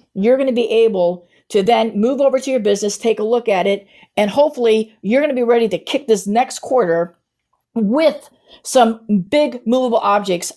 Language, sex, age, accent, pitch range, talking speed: English, female, 50-69, American, 205-255 Hz, 180 wpm